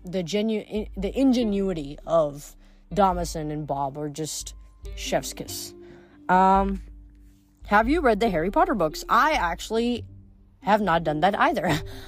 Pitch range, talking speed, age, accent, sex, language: 150-200 Hz, 130 wpm, 30-49, American, female, English